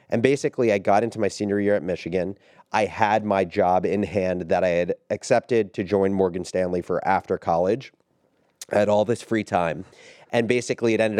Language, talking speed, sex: English, 200 wpm, male